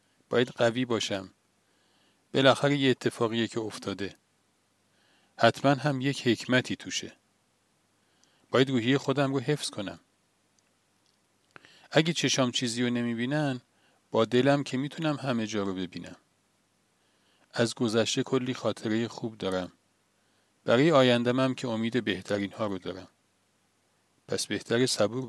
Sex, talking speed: male, 115 wpm